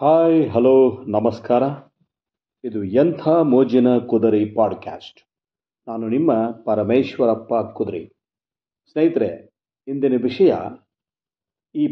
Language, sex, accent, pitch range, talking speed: Kannada, male, native, 120-165 Hz, 80 wpm